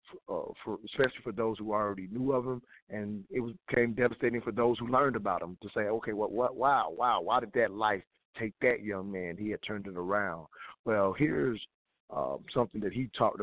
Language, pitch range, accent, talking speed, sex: English, 95-110 Hz, American, 215 wpm, male